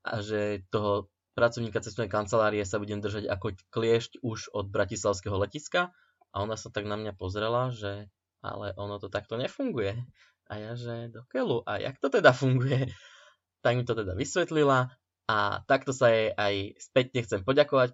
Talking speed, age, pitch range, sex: 165 wpm, 20-39, 105-135 Hz, male